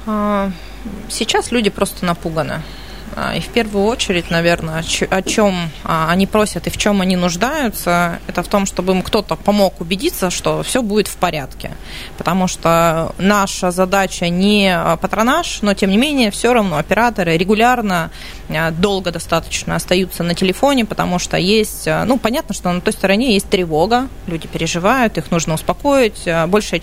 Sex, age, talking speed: female, 20-39, 150 wpm